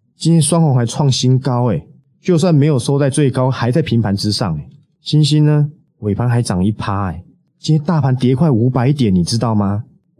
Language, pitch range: Chinese, 110-150 Hz